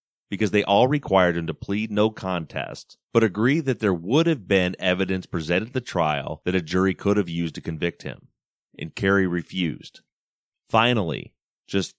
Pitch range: 85-105 Hz